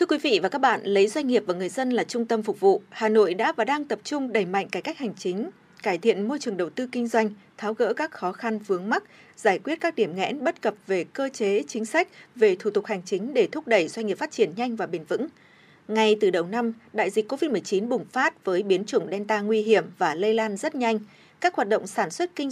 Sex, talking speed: female, 265 wpm